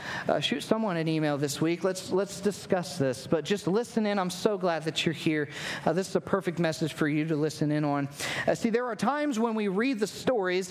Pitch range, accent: 165-215 Hz, American